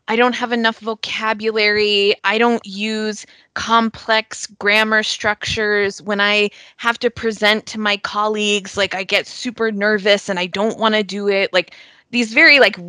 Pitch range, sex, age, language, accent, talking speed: 170-215 Hz, female, 20-39, English, American, 165 wpm